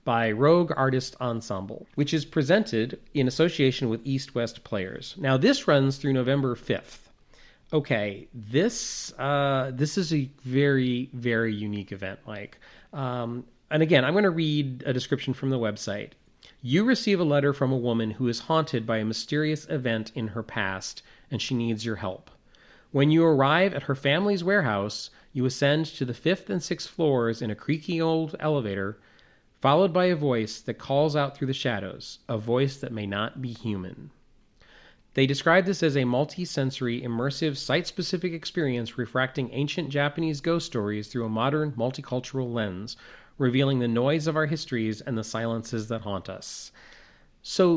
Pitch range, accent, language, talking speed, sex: 115-155 Hz, American, English, 165 wpm, male